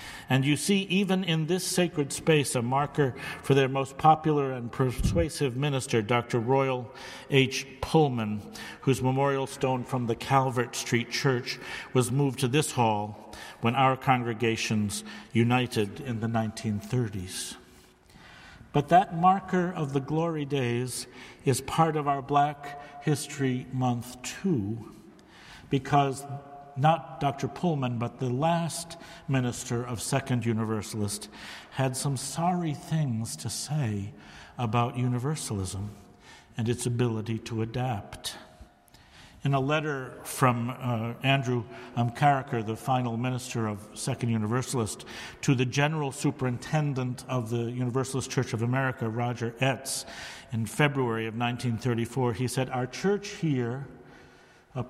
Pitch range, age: 120-140 Hz, 60-79